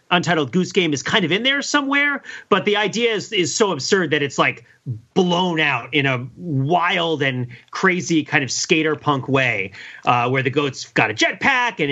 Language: English